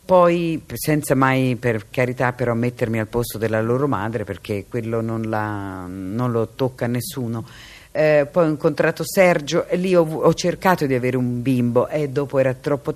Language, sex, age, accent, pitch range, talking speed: Italian, female, 50-69, native, 125-160 Hz, 170 wpm